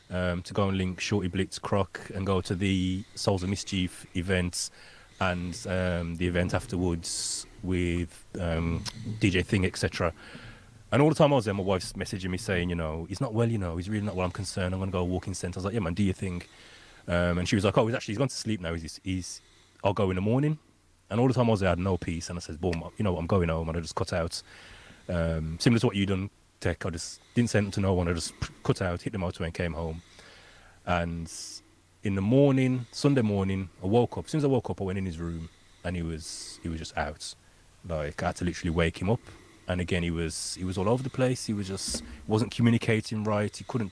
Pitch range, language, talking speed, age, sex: 90-110 Hz, English, 255 wpm, 30-49, male